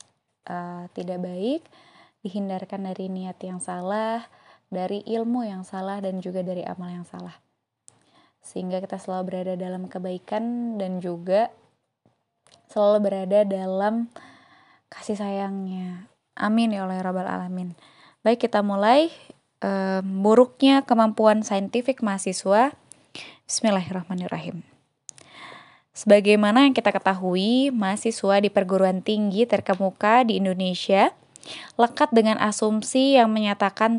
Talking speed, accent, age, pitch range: 105 wpm, native, 20-39, 190-225 Hz